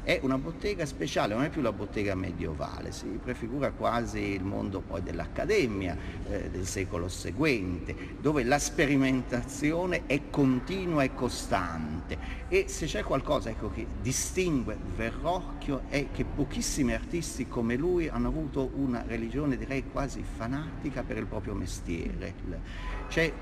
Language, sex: Italian, male